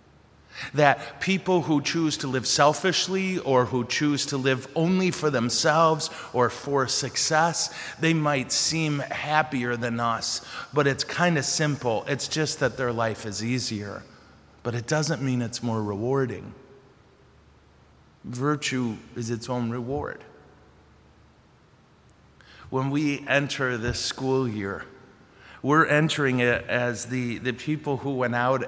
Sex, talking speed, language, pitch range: male, 135 wpm, English, 120-150 Hz